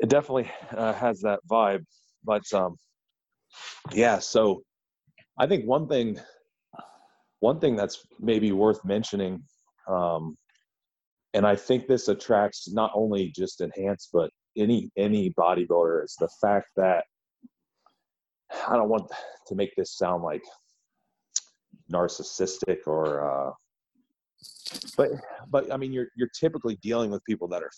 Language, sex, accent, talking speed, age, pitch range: English, male, American, 130 wpm, 30-49, 95-120 Hz